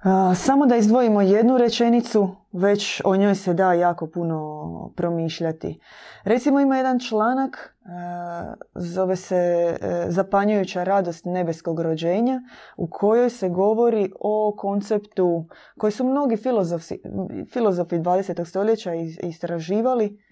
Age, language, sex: 20-39, Croatian, female